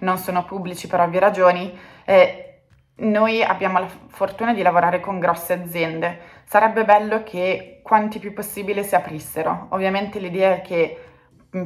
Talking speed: 150 wpm